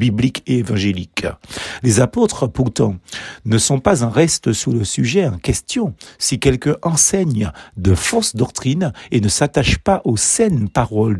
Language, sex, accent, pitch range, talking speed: French, male, French, 110-170 Hz, 150 wpm